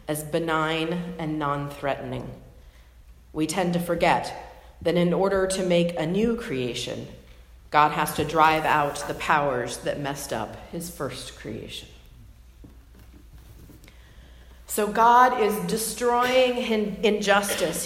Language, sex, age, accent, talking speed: English, female, 40-59, American, 115 wpm